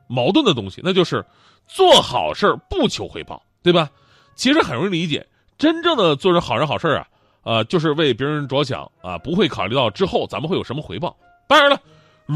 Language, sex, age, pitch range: Chinese, male, 30-49, 135-205 Hz